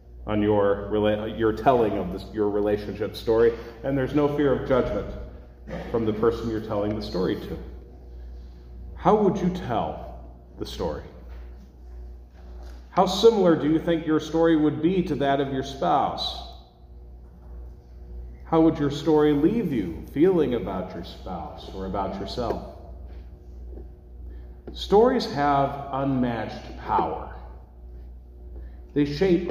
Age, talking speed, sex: 40-59, 125 wpm, male